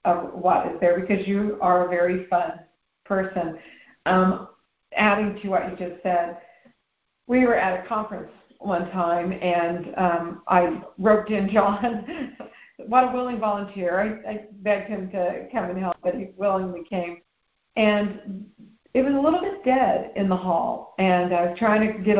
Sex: female